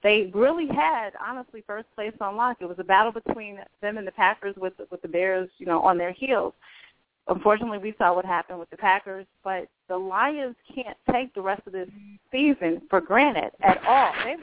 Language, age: English, 30-49